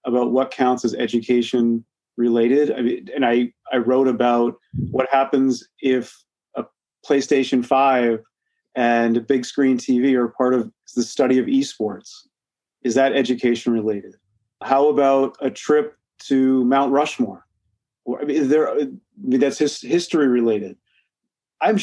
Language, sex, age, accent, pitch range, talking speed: English, male, 30-49, American, 120-145 Hz, 130 wpm